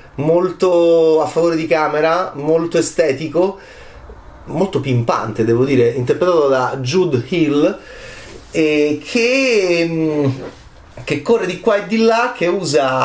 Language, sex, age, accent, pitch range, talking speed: Italian, male, 30-49, native, 130-215 Hz, 120 wpm